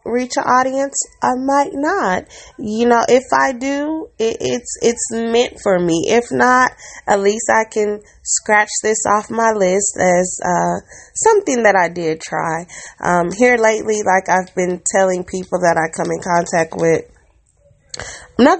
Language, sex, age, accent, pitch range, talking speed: English, female, 20-39, American, 180-230 Hz, 160 wpm